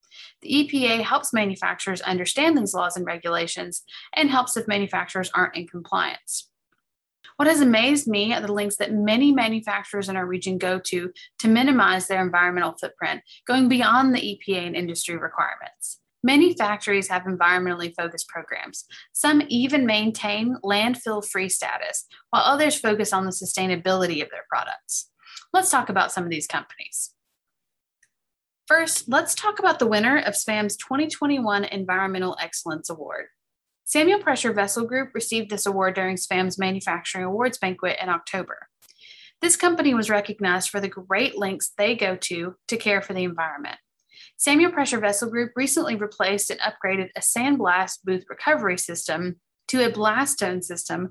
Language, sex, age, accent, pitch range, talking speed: English, female, 20-39, American, 185-255 Hz, 155 wpm